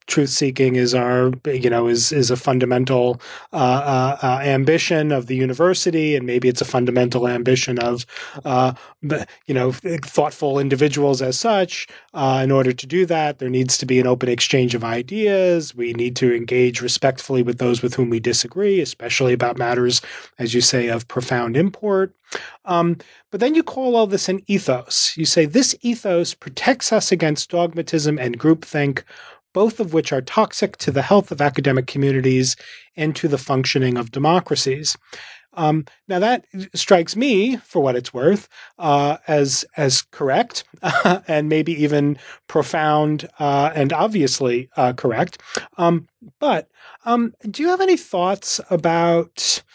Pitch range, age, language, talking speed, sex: 125-170 Hz, 30-49, English, 160 wpm, male